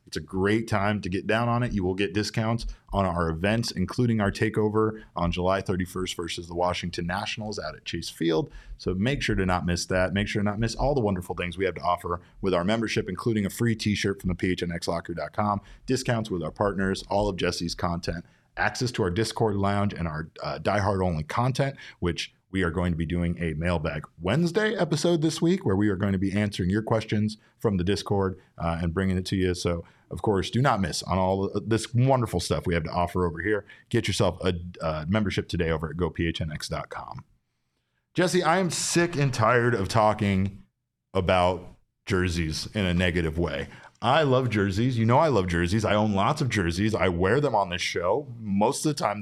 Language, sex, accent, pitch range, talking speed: English, male, American, 90-115 Hz, 210 wpm